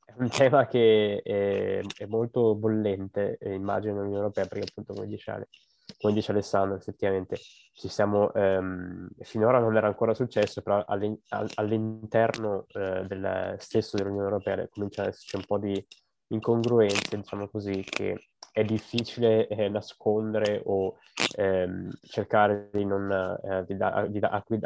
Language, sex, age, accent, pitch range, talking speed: Italian, male, 20-39, native, 95-110 Hz, 145 wpm